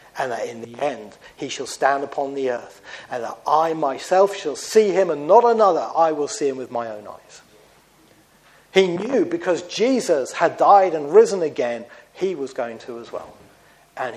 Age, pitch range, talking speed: 50-69, 135-205 Hz, 190 wpm